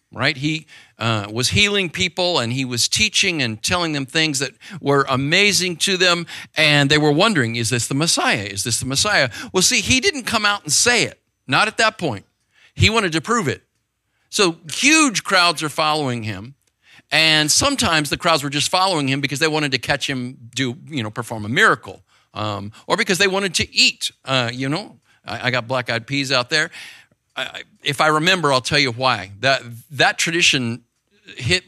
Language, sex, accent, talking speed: English, male, American, 200 wpm